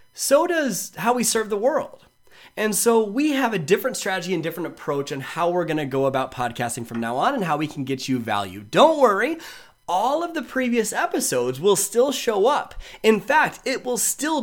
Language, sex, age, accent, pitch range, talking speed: English, male, 20-39, American, 155-235 Hz, 210 wpm